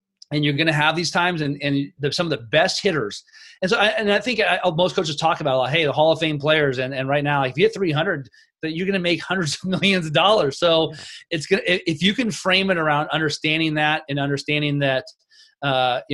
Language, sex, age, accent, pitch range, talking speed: English, male, 30-49, American, 140-175 Hz, 255 wpm